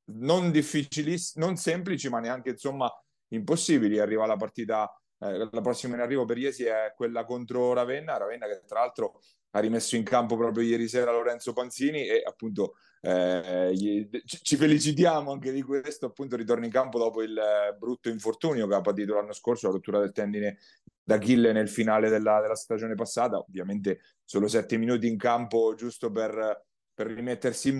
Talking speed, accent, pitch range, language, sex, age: 170 wpm, native, 105-125 Hz, Italian, male, 30-49